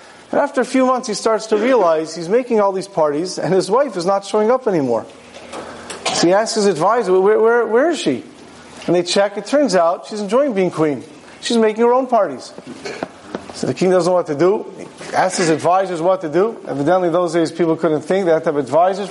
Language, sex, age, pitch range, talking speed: English, male, 40-59, 170-220 Hz, 230 wpm